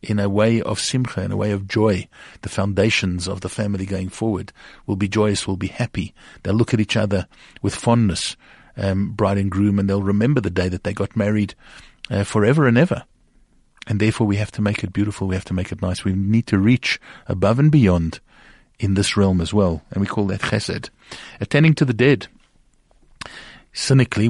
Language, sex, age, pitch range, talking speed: English, male, 50-69, 100-115 Hz, 205 wpm